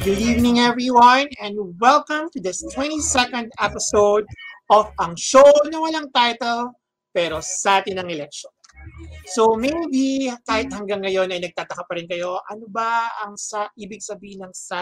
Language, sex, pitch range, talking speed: Filipino, male, 180-255 Hz, 155 wpm